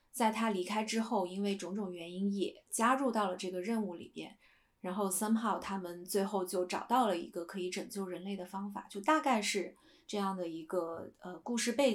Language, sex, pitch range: Chinese, female, 185-225 Hz